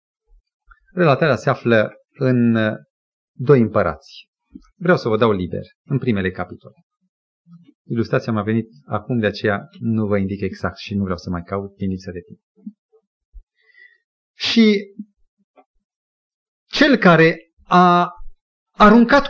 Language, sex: Romanian, male